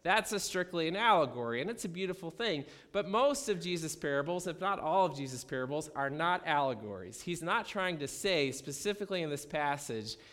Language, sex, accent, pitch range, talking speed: English, male, American, 145-190 Hz, 185 wpm